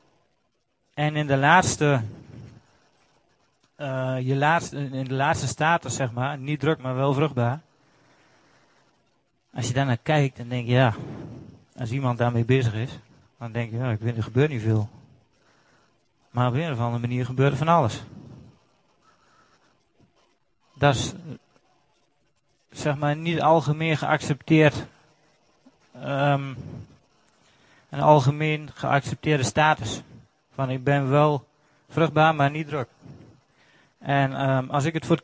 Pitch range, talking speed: 120-150 Hz, 135 wpm